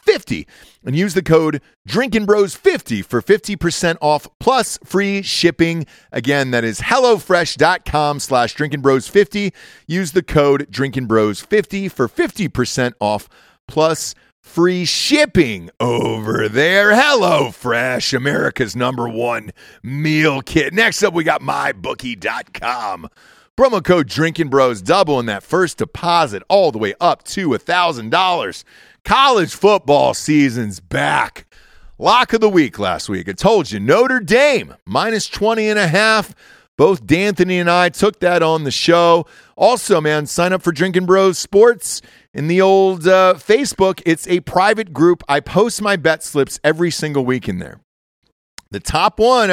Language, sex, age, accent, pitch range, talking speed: English, male, 40-59, American, 145-200 Hz, 145 wpm